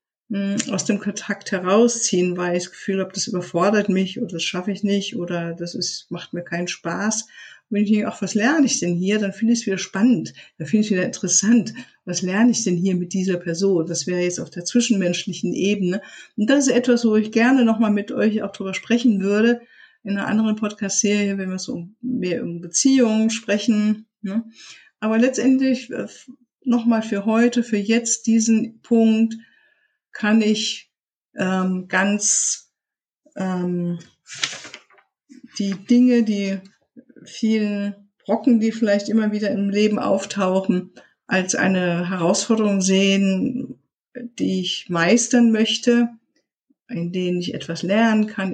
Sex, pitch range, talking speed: female, 190-230 Hz, 155 wpm